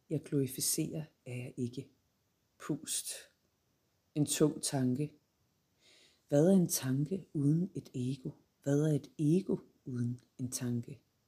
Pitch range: 130-160 Hz